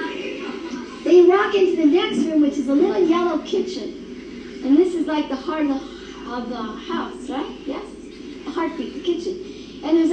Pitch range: 305-370 Hz